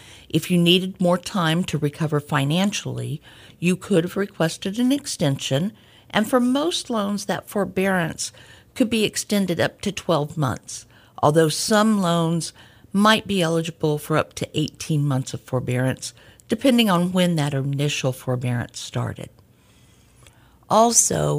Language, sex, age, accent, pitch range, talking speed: English, female, 50-69, American, 130-180 Hz, 135 wpm